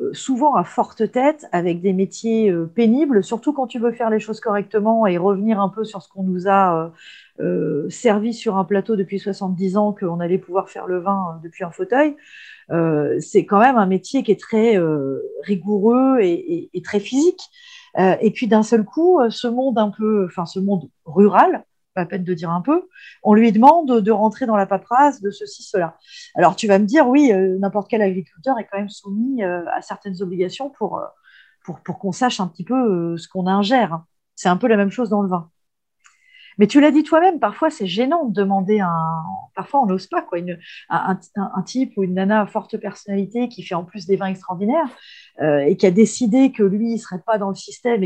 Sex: female